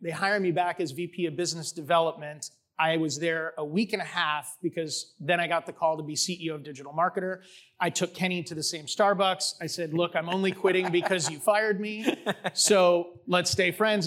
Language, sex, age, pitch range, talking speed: English, male, 30-49, 165-190 Hz, 215 wpm